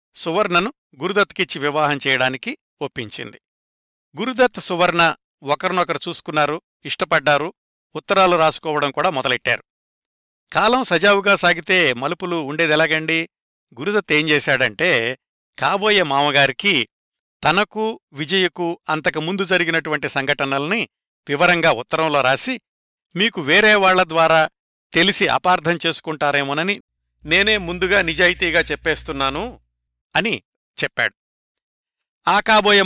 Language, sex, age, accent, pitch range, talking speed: Telugu, male, 60-79, native, 140-185 Hz, 80 wpm